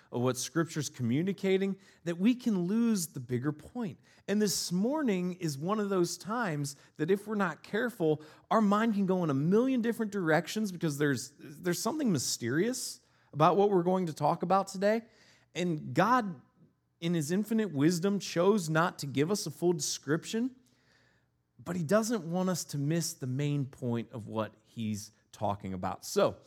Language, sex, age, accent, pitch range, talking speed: English, male, 30-49, American, 130-180 Hz, 170 wpm